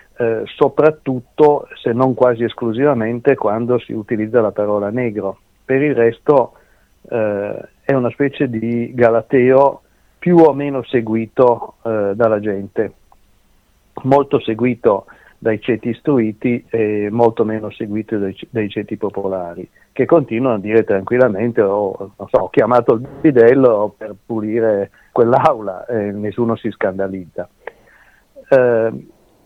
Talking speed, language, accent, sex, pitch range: 125 wpm, Italian, native, male, 105-130 Hz